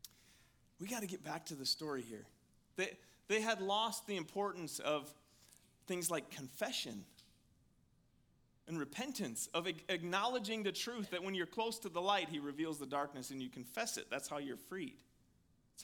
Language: English